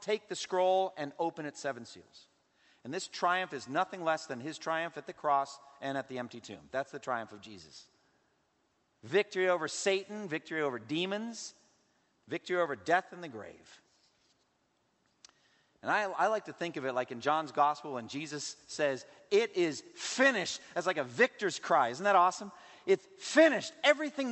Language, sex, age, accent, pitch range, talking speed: English, male, 50-69, American, 135-175 Hz, 175 wpm